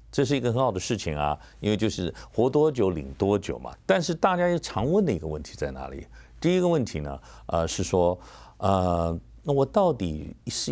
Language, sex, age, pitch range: Chinese, male, 50-69, 85-130 Hz